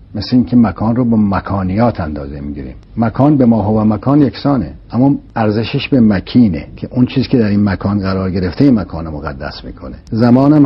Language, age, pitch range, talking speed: Persian, 60-79, 95-140 Hz, 180 wpm